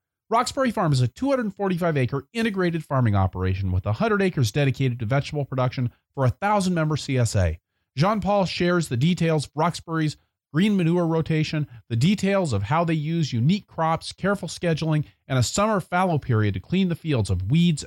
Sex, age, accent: male, 30-49, American